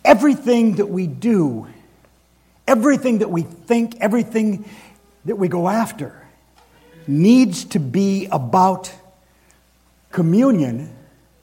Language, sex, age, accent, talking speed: English, male, 60-79, American, 95 wpm